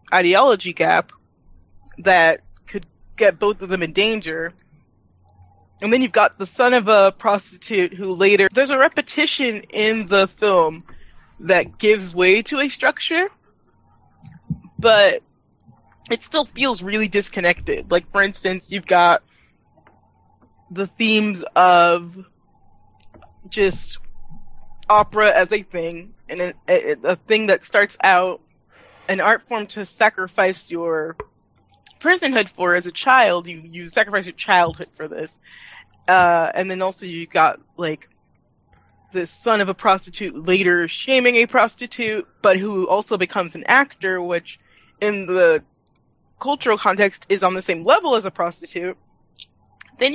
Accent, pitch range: American, 175-215 Hz